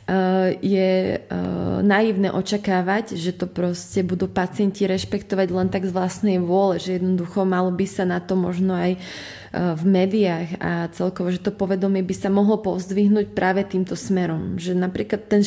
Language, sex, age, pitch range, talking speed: Slovak, female, 20-39, 180-195 Hz, 155 wpm